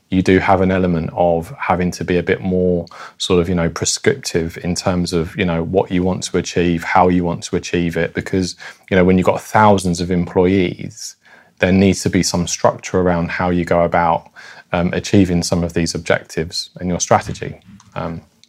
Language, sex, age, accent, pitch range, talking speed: English, male, 20-39, British, 85-95 Hz, 205 wpm